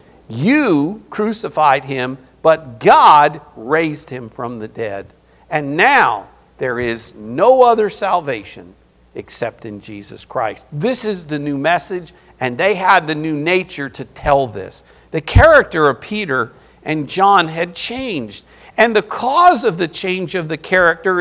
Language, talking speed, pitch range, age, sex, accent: English, 145 wpm, 140-210 Hz, 50-69, male, American